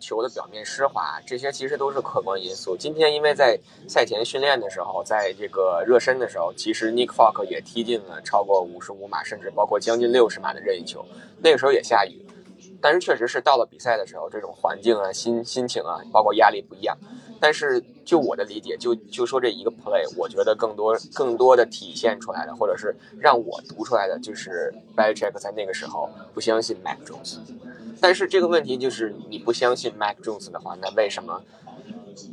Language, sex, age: Chinese, male, 20-39